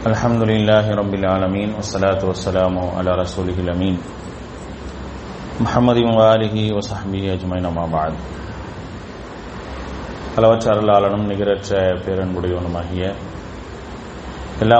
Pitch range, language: 90-110 Hz, English